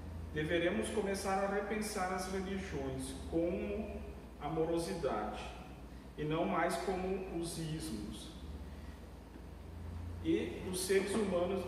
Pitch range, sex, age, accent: 140-190 Hz, male, 40-59, Brazilian